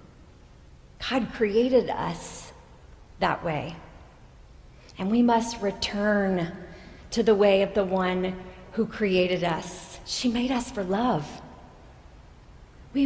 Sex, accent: female, American